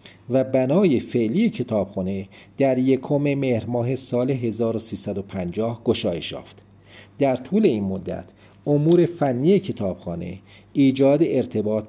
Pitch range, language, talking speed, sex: 105-135 Hz, Persian, 105 wpm, male